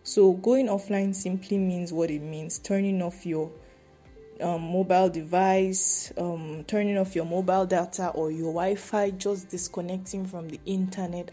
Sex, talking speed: female, 150 wpm